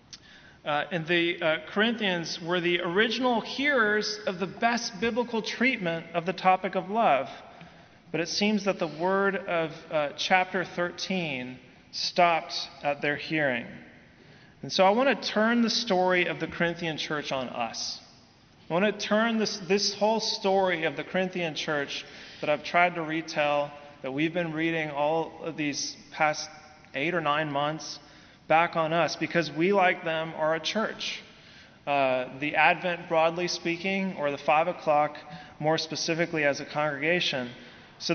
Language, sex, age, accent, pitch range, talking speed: English, male, 30-49, American, 150-185 Hz, 160 wpm